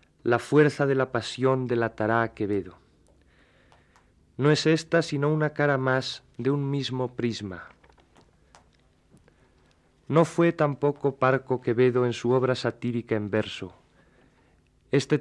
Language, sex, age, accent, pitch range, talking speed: Spanish, male, 40-59, Spanish, 120-140 Hz, 120 wpm